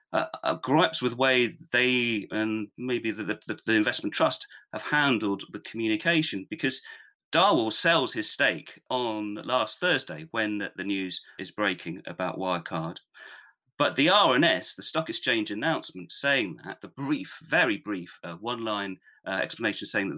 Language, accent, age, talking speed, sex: English, British, 30-49, 150 wpm, male